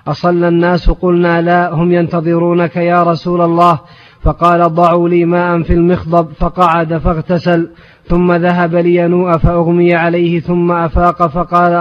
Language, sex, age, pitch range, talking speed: Arabic, male, 30-49, 170-175 Hz, 125 wpm